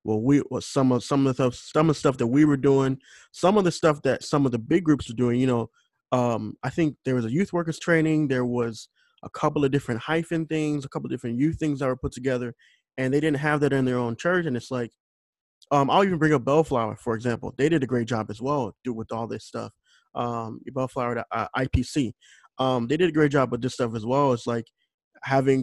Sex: male